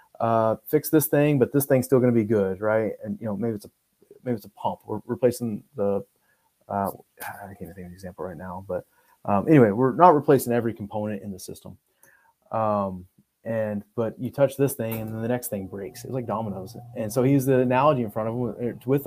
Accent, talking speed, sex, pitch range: American, 230 wpm, male, 110-130 Hz